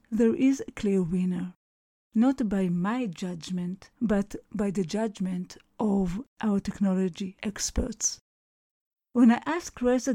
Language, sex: English, female